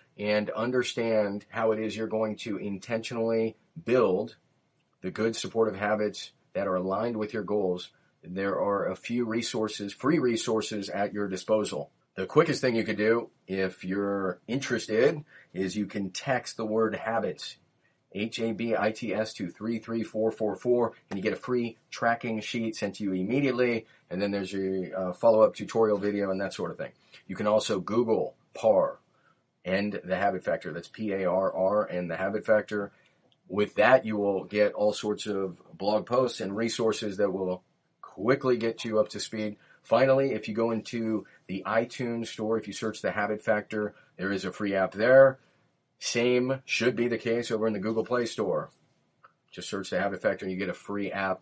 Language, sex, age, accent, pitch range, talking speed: English, male, 40-59, American, 100-115 Hz, 175 wpm